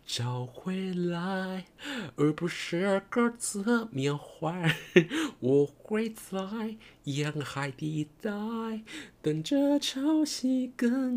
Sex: male